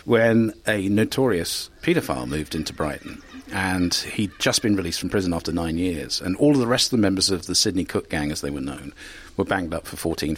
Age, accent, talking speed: 50-69, British, 225 wpm